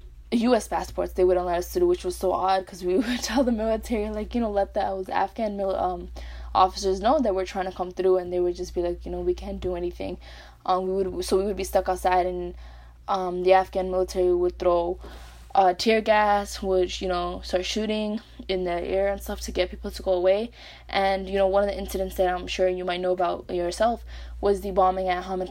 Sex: female